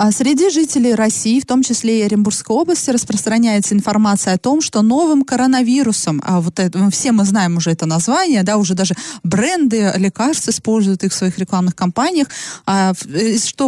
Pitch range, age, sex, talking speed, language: 195-255 Hz, 20-39, female, 160 wpm, Russian